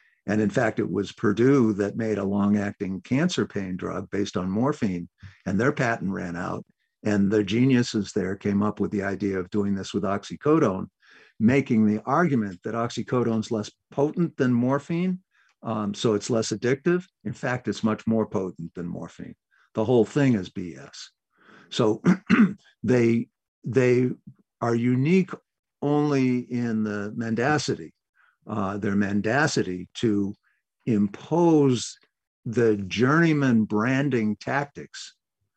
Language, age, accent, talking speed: English, 50-69, American, 140 wpm